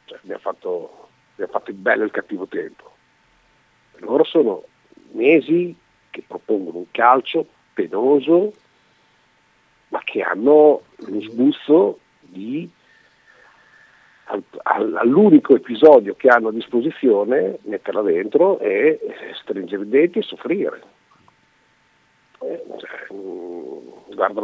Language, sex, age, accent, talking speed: Italian, male, 50-69, native, 95 wpm